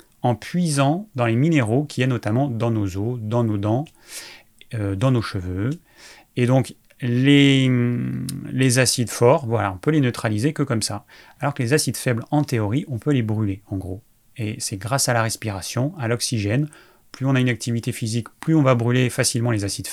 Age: 30-49